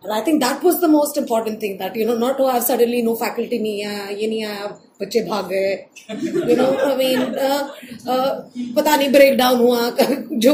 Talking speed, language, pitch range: 190 wpm, Marathi, 230-280 Hz